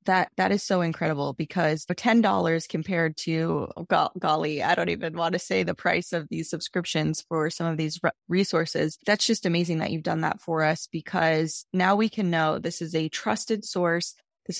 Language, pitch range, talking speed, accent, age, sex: English, 160-195 Hz, 195 wpm, American, 20-39, female